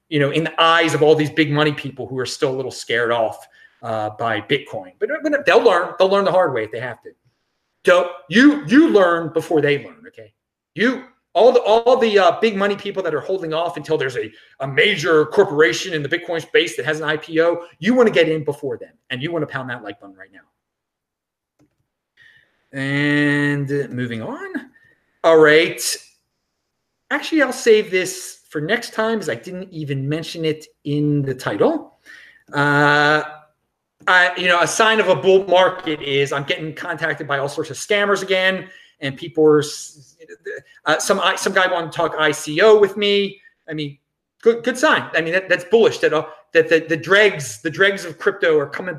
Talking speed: 200 wpm